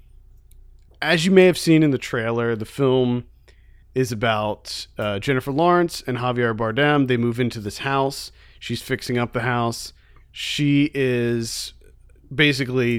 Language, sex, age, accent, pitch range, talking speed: English, male, 40-59, American, 115-135 Hz, 145 wpm